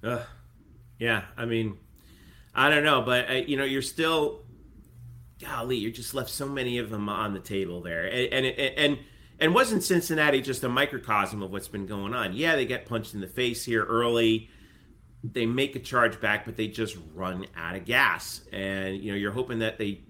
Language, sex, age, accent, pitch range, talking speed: English, male, 30-49, American, 100-130 Hz, 195 wpm